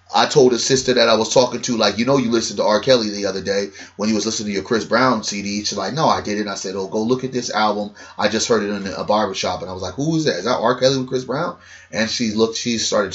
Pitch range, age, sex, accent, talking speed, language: 100-120 Hz, 30-49, male, American, 310 wpm, English